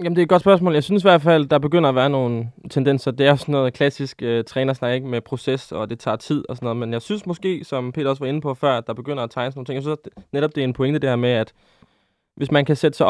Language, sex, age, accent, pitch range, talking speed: Danish, male, 20-39, native, 120-150 Hz, 325 wpm